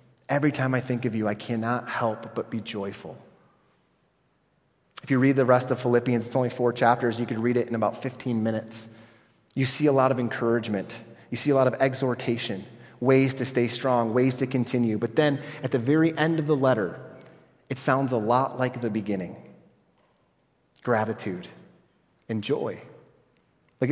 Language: English